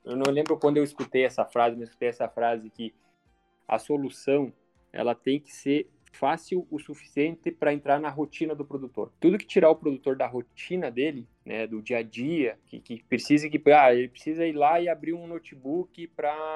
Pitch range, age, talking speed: 120-150 Hz, 20-39, 200 wpm